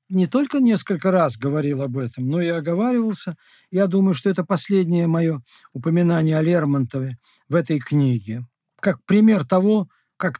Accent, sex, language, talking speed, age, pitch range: native, male, Russian, 150 wpm, 50-69, 145-190 Hz